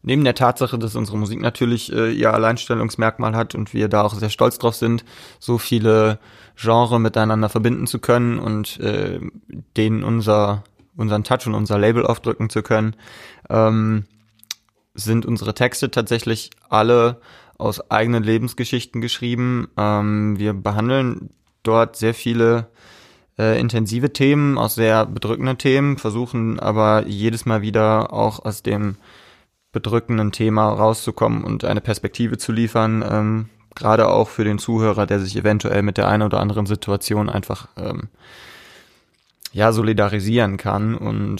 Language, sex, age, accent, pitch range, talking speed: German, male, 20-39, German, 110-120 Hz, 140 wpm